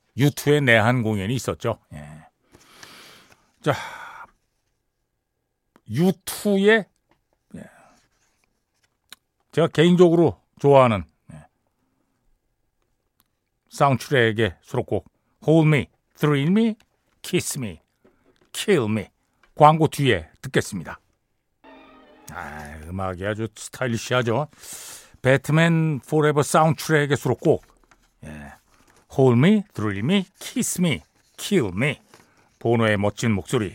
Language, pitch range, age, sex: Korean, 110-180 Hz, 60-79, male